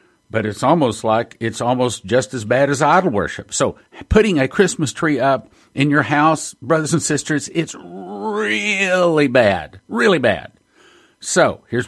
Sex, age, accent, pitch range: male, 50-69, American, 130-160 Hz